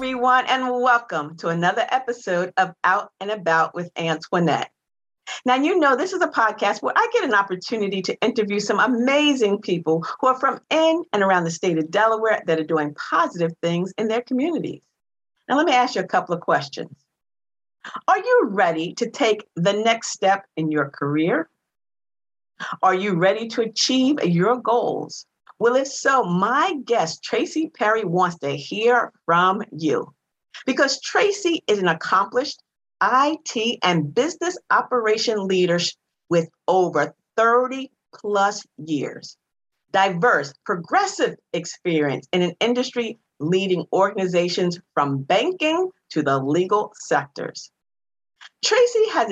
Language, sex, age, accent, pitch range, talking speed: English, female, 50-69, American, 175-255 Hz, 140 wpm